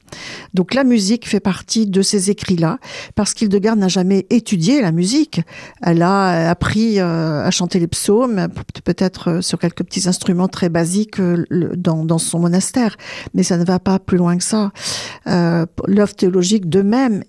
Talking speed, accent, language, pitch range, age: 165 wpm, French, French, 185-220 Hz, 50-69